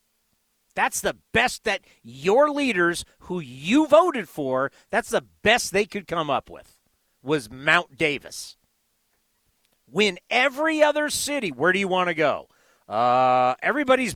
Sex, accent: male, American